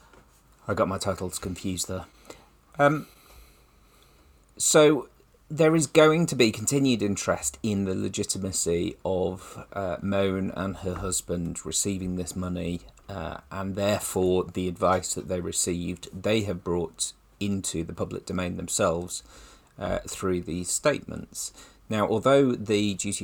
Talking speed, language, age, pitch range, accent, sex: 130 wpm, English, 40-59, 90-105 Hz, British, male